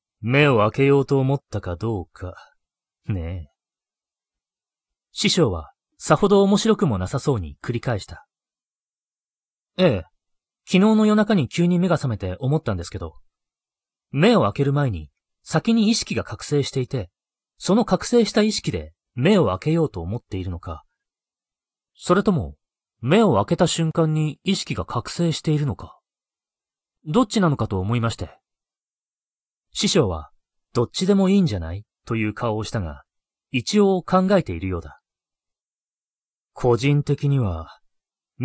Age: 30-49